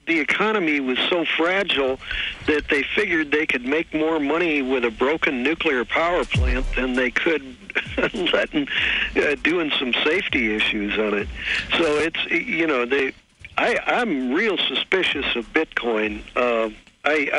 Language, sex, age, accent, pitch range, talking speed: English, male, 60-79, American, 115-145 Hz, 145 wpm